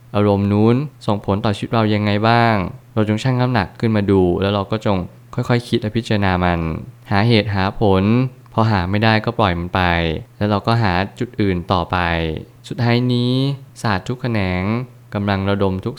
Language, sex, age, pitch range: Thai, male, 20-39, 95-115 Hz